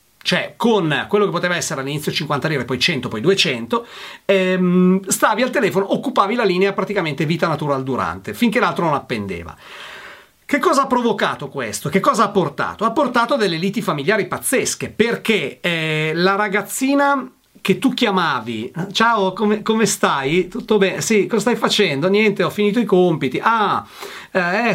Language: Italian